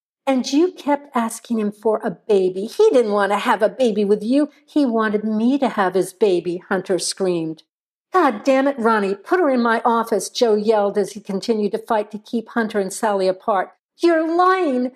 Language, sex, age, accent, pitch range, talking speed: English, female, 60-79, American, 195-265 Hz, 200 wpm